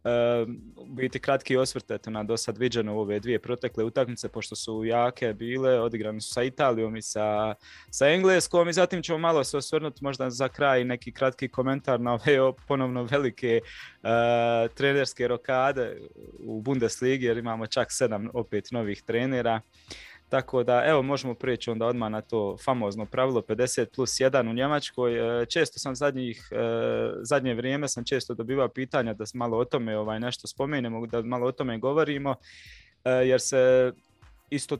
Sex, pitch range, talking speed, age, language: male, 120-140 Hz, 160 wpm, 20-39, Croatian